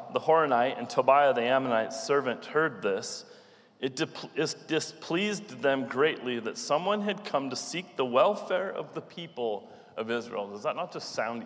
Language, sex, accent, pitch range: English, male, American, 135-185 Hz